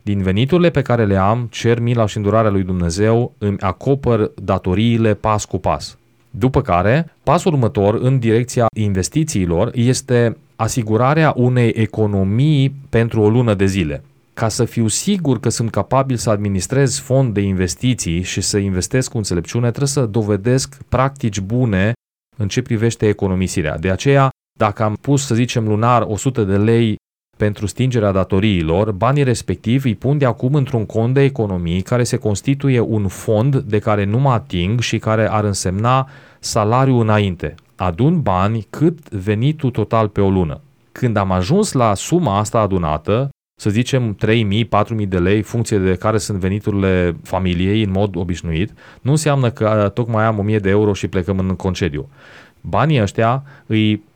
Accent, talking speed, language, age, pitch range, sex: native, 160 wpm, Romanian, 30-49, 100-125 Hz, male